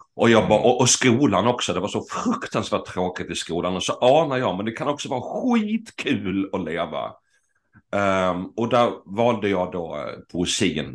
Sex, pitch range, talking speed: male, 90-115 Hz, 170 wpm